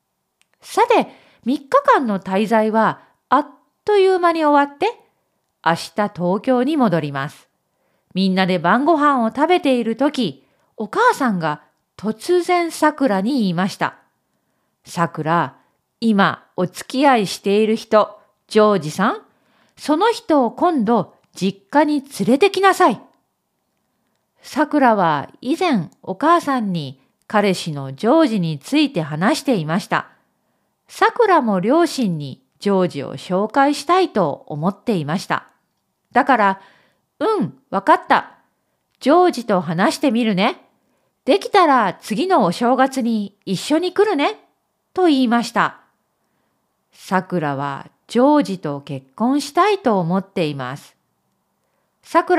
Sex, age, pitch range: female, 40-59, 185-300 Hz